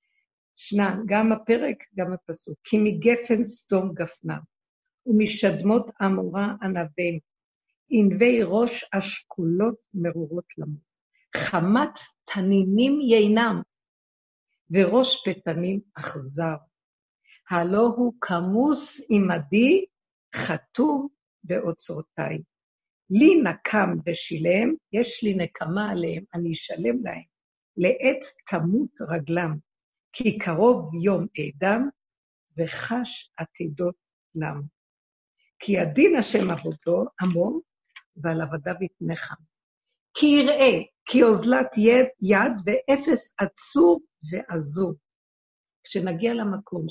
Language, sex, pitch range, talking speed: Hebrew, female, 170-235 Hz, 85 wpm